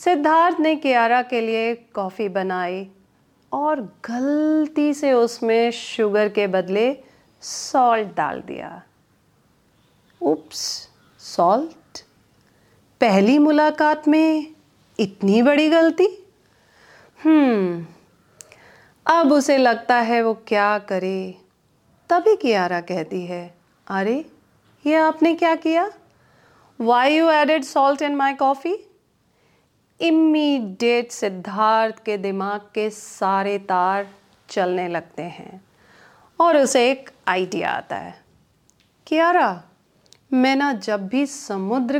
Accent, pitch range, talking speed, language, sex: native, 205-305 Hz, 105 wpm, Hindi, female